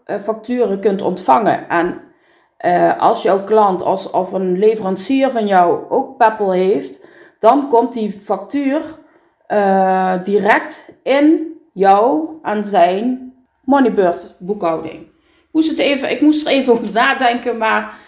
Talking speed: 120 wpm